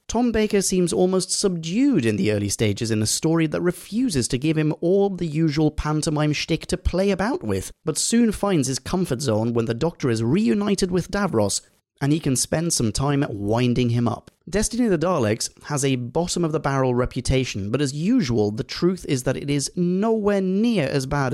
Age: 30-49